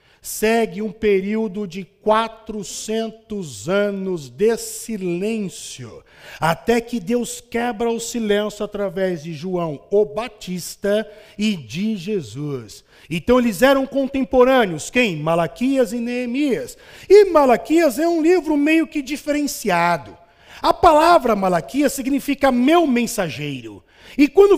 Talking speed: 110 wpm